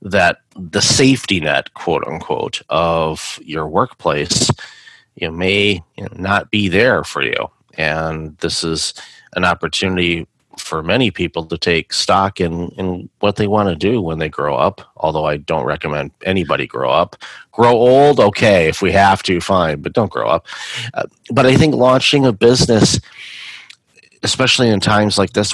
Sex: male